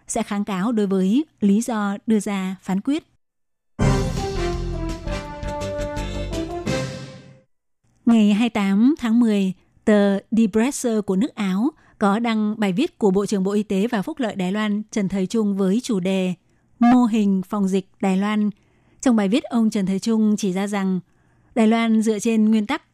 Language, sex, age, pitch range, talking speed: Vietnamese, female, 20-39, 195-225 Hz, 170 wpm